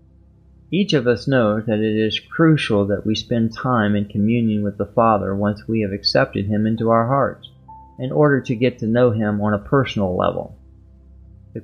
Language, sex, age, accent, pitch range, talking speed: English, male, 30-49, American, 105-130 Hz, 190 wpm